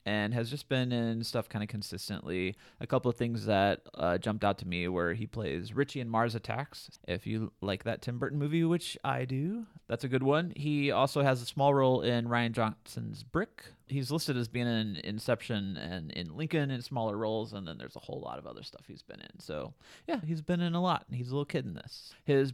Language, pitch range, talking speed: English, 110-135 Hz, 235 wpm